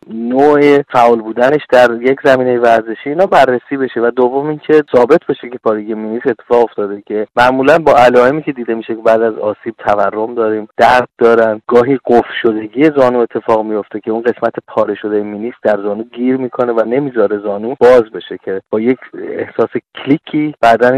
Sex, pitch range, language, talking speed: male, 115-145 Hz, Persian, 175 wpm